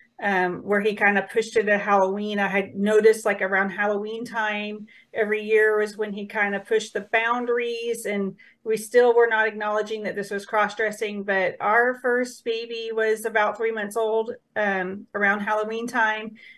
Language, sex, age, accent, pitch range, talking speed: English, female, 40-59, American, 205-230 Hz, 175 wpm